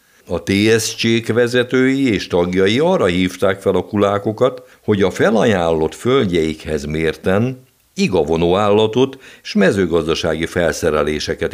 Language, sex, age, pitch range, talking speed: Hungarian, male, 60-79, 90-125 Hz, 100 wpm